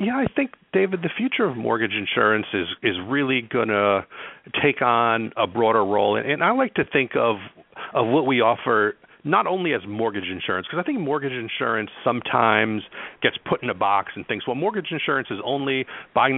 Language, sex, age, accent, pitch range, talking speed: English, male, 50-69, American, 95-125 Hz, 195 wpm